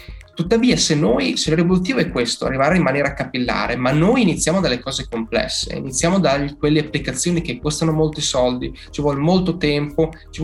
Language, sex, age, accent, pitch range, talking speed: Italian, male, 10-29, native, 135-175 Hz, 175 wpm